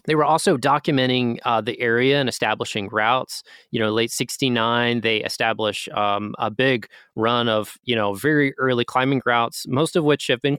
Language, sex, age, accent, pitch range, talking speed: English, male, 20-39, American, 110-130 Hz, 180 wpm